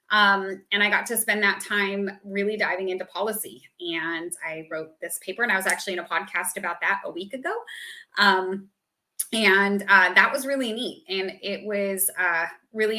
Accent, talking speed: American, 190 wpm